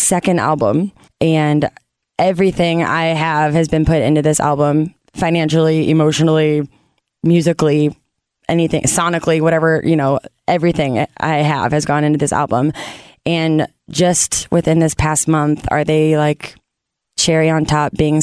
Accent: American